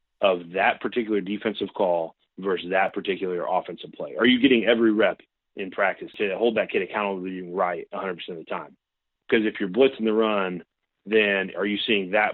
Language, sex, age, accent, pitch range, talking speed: English, male, 30-49, American, 95-115 Hz, 195 wpm